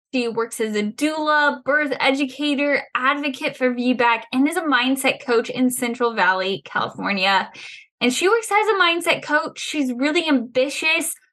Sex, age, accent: female, 10-29, American